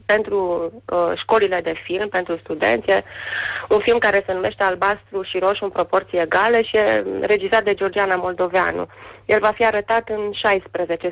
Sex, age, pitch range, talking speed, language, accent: female, 30-49, 175-215 Hz, 160 wpm, Romanian, native